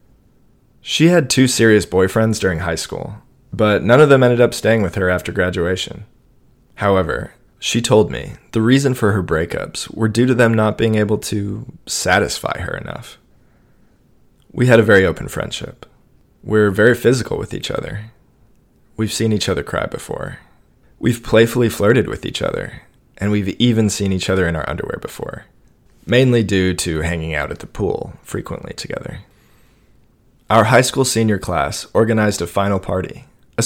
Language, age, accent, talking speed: English, 20-39, American, 165 wpm